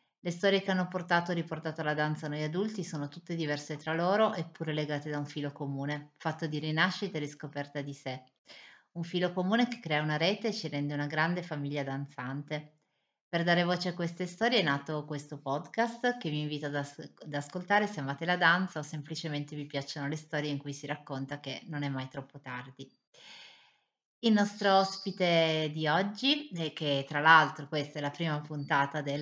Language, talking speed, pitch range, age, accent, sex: Italian, 195 wpm, 145-170 Hz, 30-49, native, female